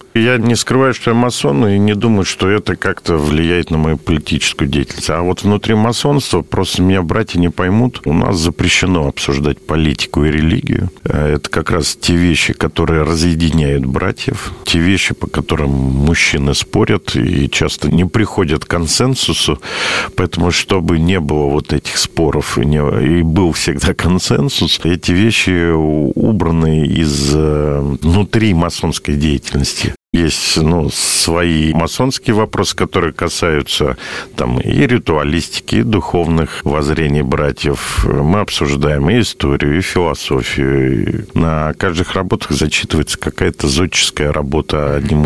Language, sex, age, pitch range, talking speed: Russian, male, 50-69, 75-95 Hz, 135 wpm